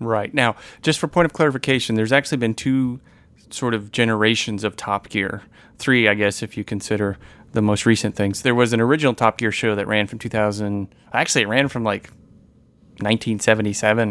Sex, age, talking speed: male, 30-49, 185 wpm